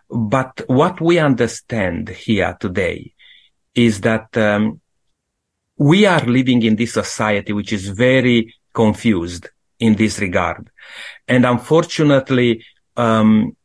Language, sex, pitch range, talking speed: English, male, 110-140 Hz, 110 wpm